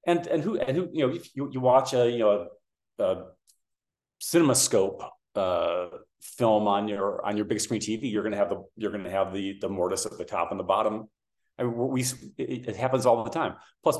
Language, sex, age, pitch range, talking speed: English, male, 40-59, 100-125 Hz, 240 wpm